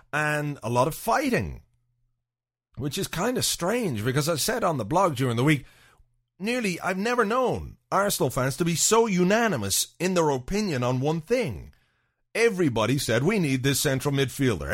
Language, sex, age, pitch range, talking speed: English, male, 40-59, 120-165 Hz, 170 wpm